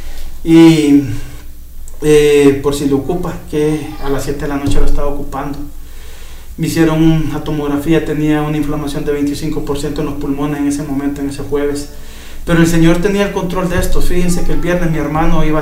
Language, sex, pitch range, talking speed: Spanish, male, 145-160 Hz, 190 wpm